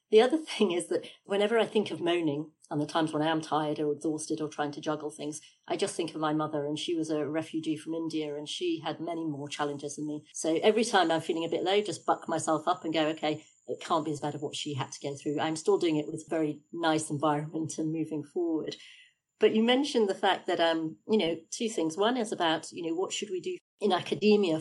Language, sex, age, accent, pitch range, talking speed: English, female, 40-59, British, 155-200 Hz, 260 wpm